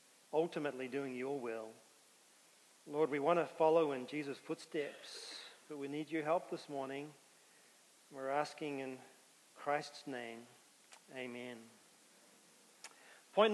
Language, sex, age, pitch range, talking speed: English, male, 40-59, 160-205 Hz, 115 wpm